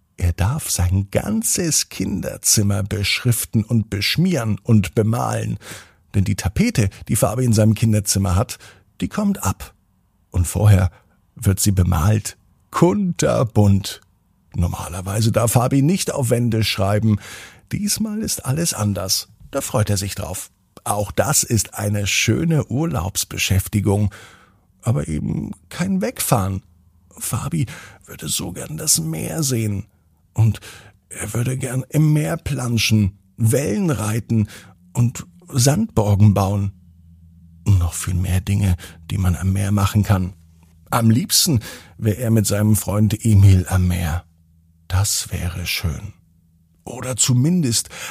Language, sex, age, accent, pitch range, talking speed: German, male, 50-69, German, 95-120 Hz, 125 wpm